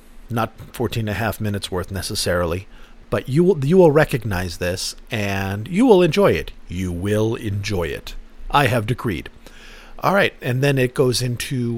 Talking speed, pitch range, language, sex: 175 wpm, 105-150 Hz, English, male